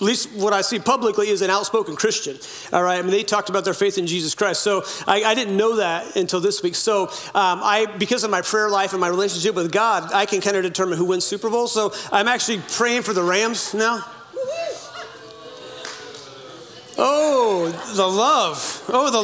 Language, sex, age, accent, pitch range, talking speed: English, male, 40-59, American, 190-235 Hz, 205 wpm